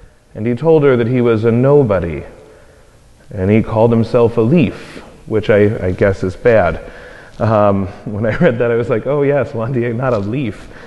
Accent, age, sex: American, 30-49, male